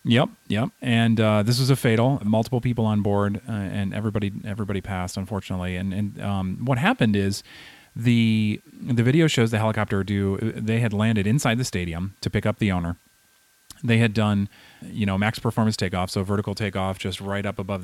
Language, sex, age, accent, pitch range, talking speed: English, male, 30-49, American, 95-115 Hz, 190 wpm